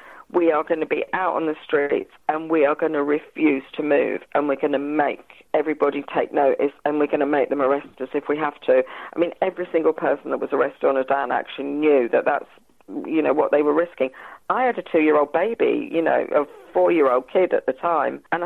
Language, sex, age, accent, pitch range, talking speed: English, female, 40-59, British, 145-185 Hz, 235 wpm